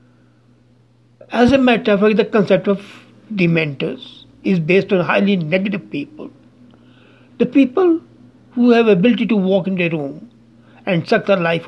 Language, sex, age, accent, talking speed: English, male, 60-79, Indian, 150 wpm